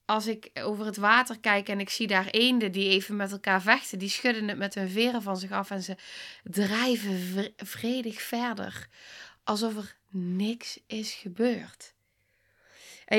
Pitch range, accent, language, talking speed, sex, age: 190-235 Hz, Dutch, Dutch, 165 wpm, female, 20-39